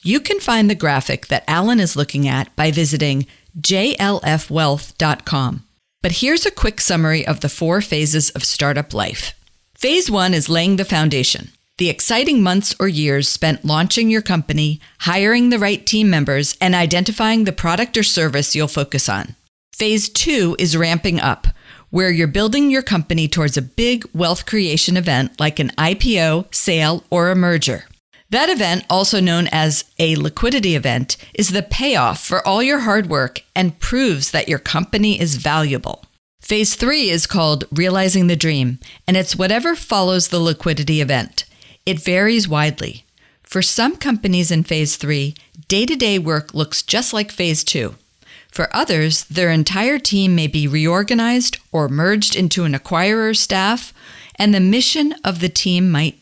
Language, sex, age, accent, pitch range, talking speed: English, female, 50-69, American, 150-200 Hz, 160 wpm